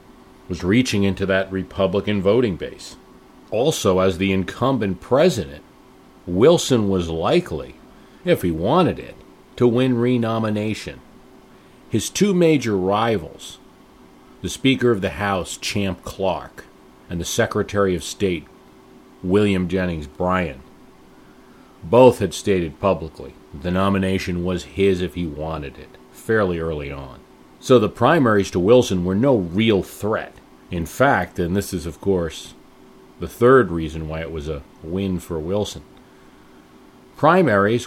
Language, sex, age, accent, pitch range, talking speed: English, male, 40-59, American, 80-105 Hz, 130 wpm